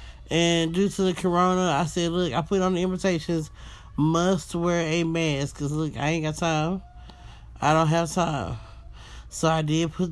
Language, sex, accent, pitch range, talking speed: English, male, American, 160-190 Hz, 185 wpm